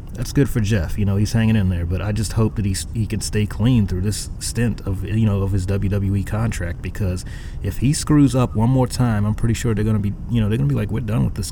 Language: English